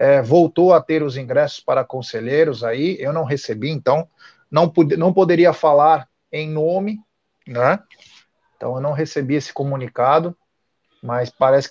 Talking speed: 140 wpm